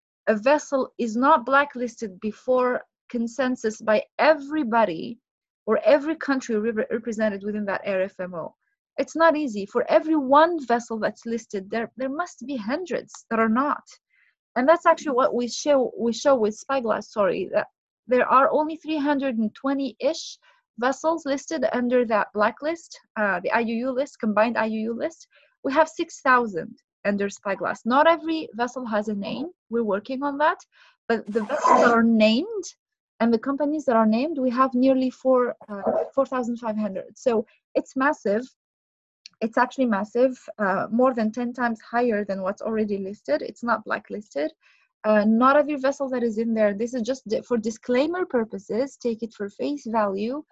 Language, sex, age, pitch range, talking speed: English, female, 30-49, 220-285 Hz, 155 wpm